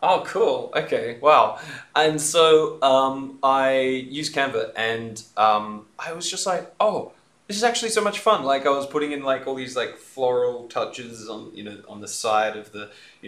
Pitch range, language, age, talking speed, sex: 105-135 Hz, English, 20-39, 195 wpm, male